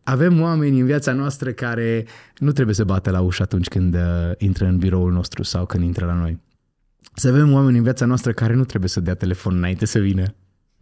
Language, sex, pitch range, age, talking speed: Romanian, male, 95-125 Hz, 20-39, 215 wpm